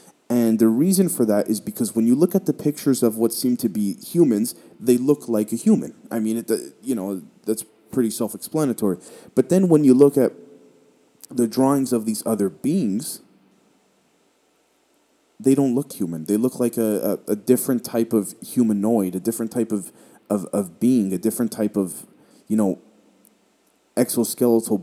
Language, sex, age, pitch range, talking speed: English, male, 30-49, 100-120 Hz, 170 wpm